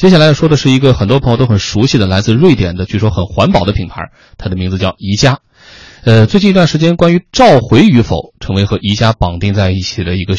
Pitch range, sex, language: 100-155 Hz, male, Chinese